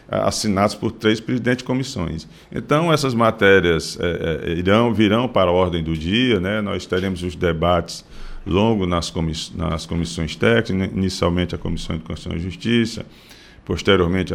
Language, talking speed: Portuguese, 160 wpm